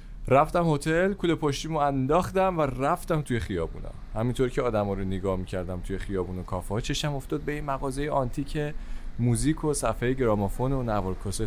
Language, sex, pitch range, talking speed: Persian, male, 95-145 Hz, 165 wpm